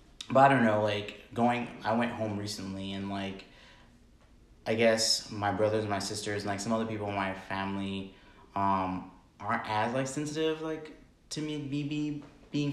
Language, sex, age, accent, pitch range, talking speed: English, male, 20-39, American, 95-115 Hz, 170 wpm